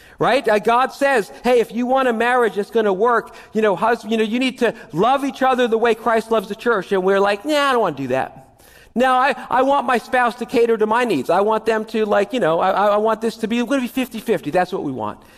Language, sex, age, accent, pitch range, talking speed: English, male, 50-69, American, 200-245 Hz, 280 wpm